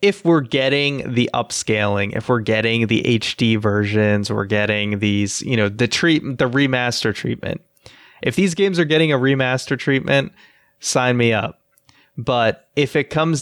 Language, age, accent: English, 20-39, American